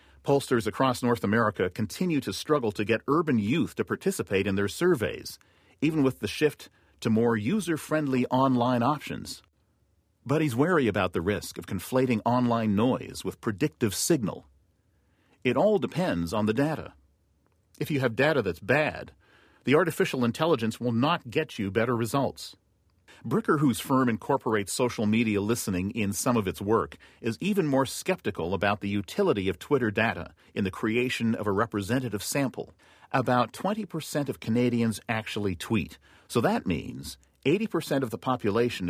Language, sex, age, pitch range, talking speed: English, male, 40-59, 100-130 Hz, 155 wpm